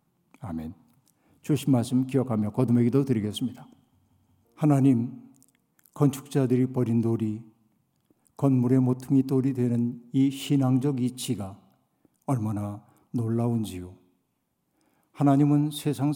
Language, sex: Korean, male